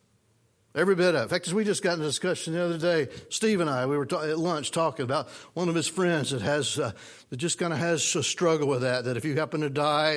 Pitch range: 150-230 Hz